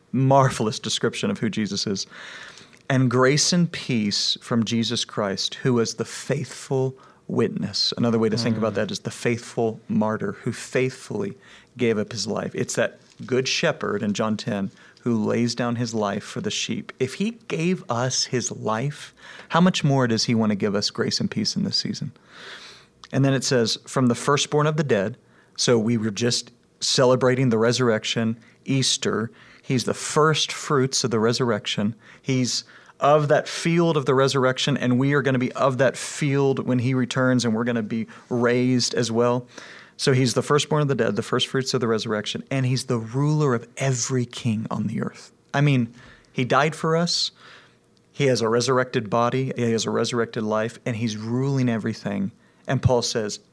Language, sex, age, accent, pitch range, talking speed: English, male, 40-59, American, 115-135 Hz, 190 wpm